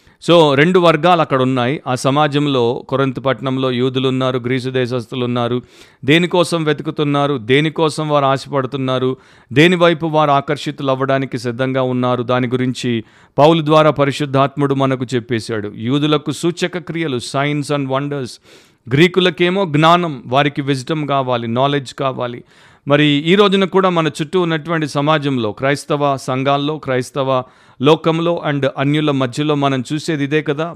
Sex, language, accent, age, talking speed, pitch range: male, Telugu, native, 50-69, 120 wpm, 125-150 Hz